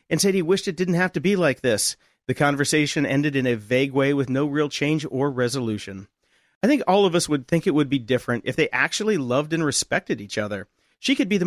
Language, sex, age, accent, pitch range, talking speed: English, male, 40-59, American, 135-195 Hz, 245 wpm